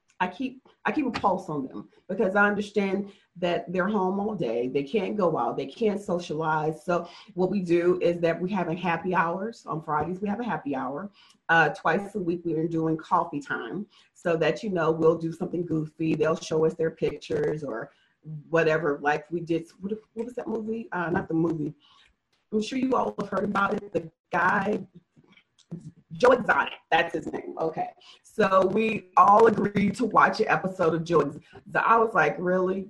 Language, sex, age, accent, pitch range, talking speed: English, female, 30-49, American, 165-215 Hz, 195 wpm